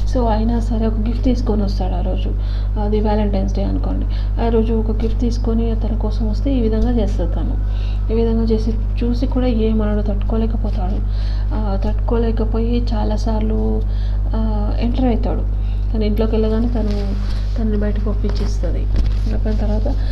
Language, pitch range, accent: Telugu, 100-110 Hz, native